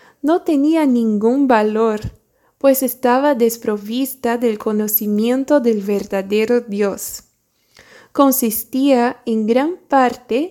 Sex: female